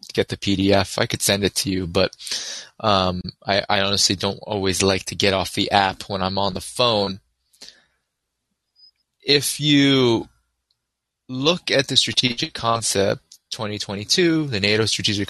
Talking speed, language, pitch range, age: 150 wpm, English, 100-130 Hz, 20-39